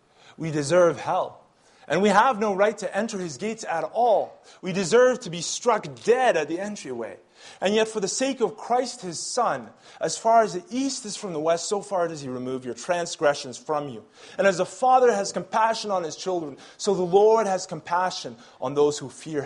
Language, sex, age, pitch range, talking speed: English, male, 30-49, 145-205 Hz, 210 wpm